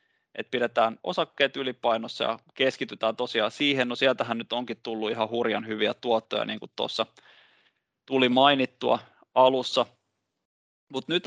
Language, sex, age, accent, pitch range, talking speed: Finnish, male, 20-39, native, 115-130 Hz, 115 wpm